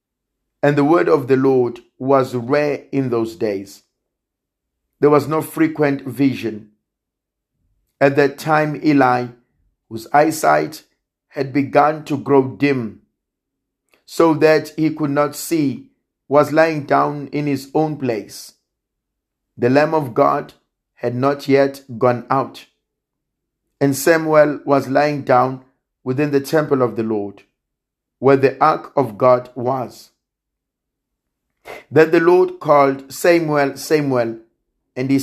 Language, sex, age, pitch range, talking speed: English, male, 50-69, 125-155 Hz, 125 wpm